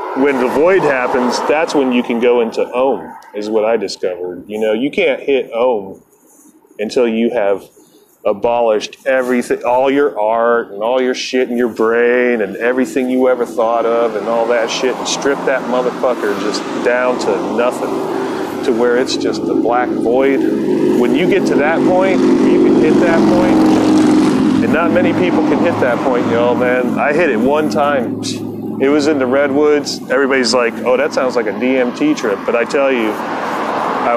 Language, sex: English, male